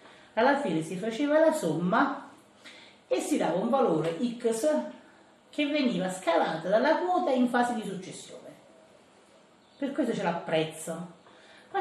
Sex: female